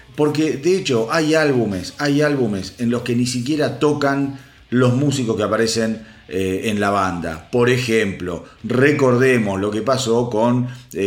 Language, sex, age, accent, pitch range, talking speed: Spanish, male, 40-59, Argentinian, 110-135 Hz, 145 wpm